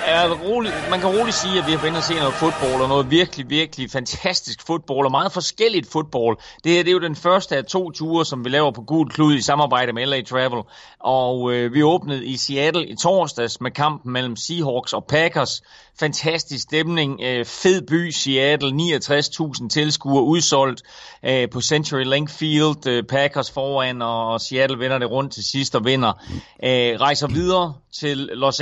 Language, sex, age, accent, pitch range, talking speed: Danish, male, 30-49, native, 130-160 Hz, 180 wpm